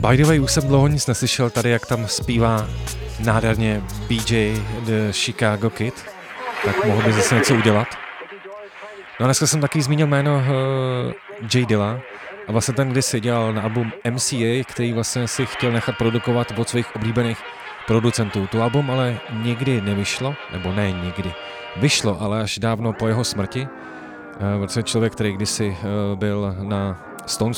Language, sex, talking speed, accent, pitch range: Czech, male, 165 wpm, native, 100-120 Hz